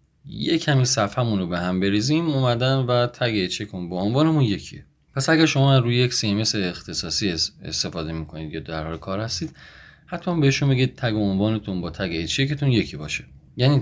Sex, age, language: male, 30-49, Persian